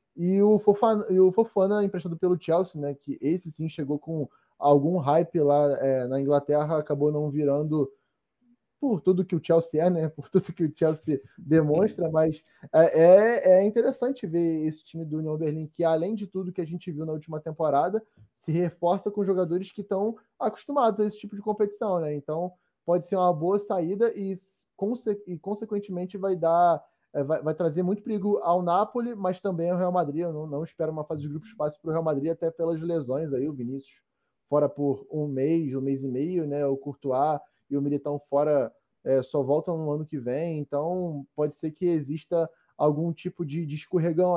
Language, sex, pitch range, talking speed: Portuguese, male, 150-180 Hz, 190 wpm